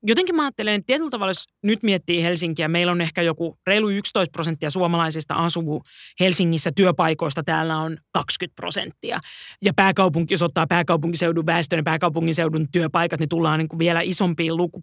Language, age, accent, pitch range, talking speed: Finnish, 20-39, native, 165-195 Hz, 160 wpm